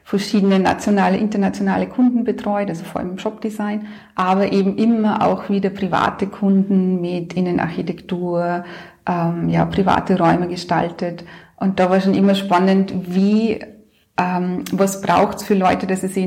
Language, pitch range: German, 185-210 Hz